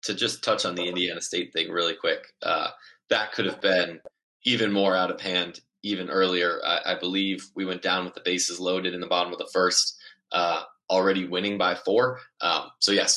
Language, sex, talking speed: English, male, 210 wpm